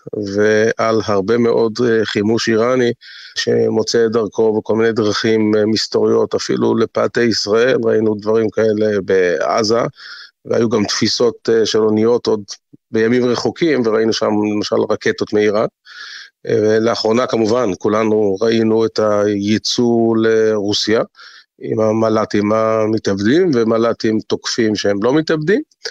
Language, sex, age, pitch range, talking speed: Hebrew, male, 30-49, 105-115 Hz, 110 wpm